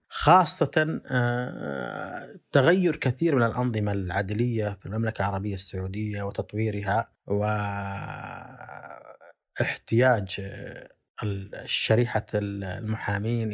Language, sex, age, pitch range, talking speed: Arabic, male, 30-49, 100-120 Hz, 60 wpm